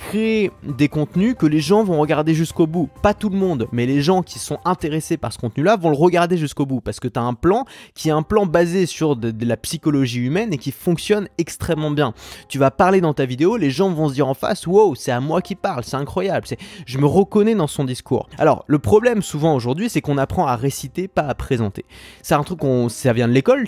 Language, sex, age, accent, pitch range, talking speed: French, male, 20-39, French, 125-175 Hz, 250 wpm